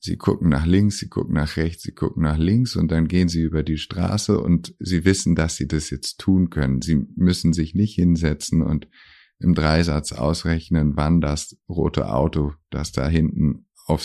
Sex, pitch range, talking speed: male, 75-90 Hz, 190 wpm